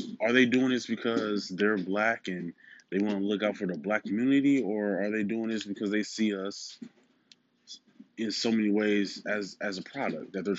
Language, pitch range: English, 100-135 Hz